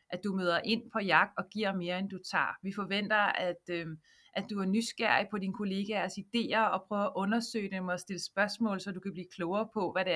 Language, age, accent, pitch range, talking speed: Danish, 30-49, native, 195-245 Hz, 235 wpm